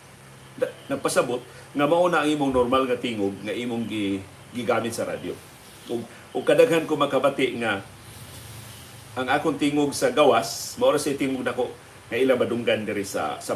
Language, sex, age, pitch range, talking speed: Filipino, male, 50-69, 115-150 Hz, 150 wpm